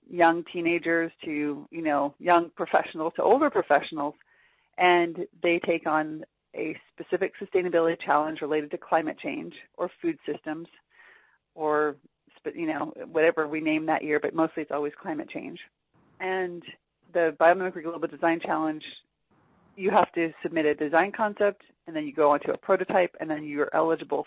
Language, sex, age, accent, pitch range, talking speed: Turkish, female, 30-49, American, 160-205 Hz, 155 wpm